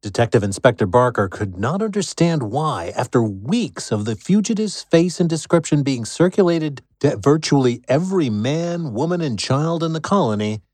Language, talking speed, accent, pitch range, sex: English, 150 wpm, American, 110-155 Hz, male